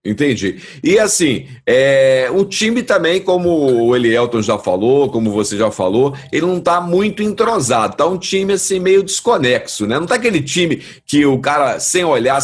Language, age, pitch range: Portuguese, 50-69, 135-215 Hz